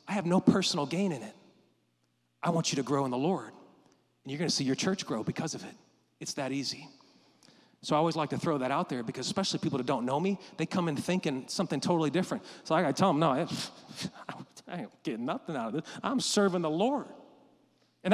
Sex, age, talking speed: male, 30-49, 225 wpm